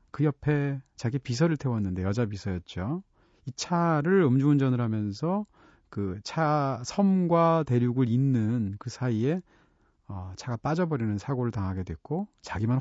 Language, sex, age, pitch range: Korean, male, 40-59, 110-155 Hz